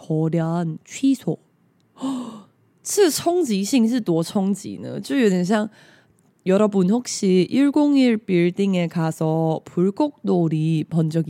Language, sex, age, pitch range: Chinese, female, 20-39, 175-250 Hz